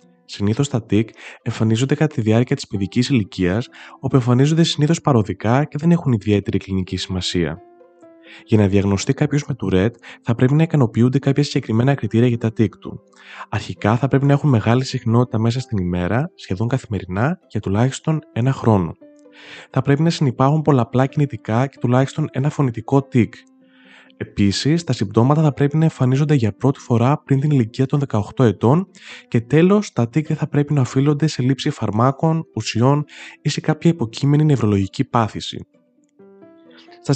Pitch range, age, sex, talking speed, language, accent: 110-150 Hz, 20-39, male, 160 wpm, Greek, native